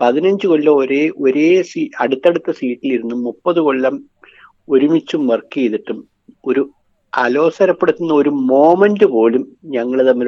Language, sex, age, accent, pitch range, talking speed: Malayalam, male, 60-79, native, 130-200 Hz, 110 wpm